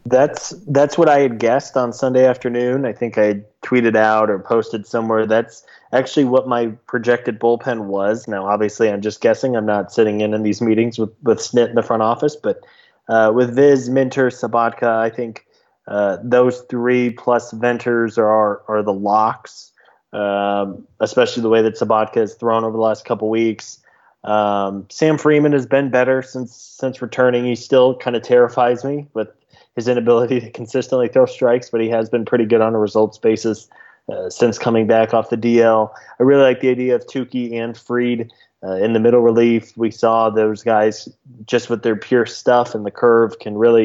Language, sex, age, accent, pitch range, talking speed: English, male, 20-39, American, 110-125 Hz, 190 wpm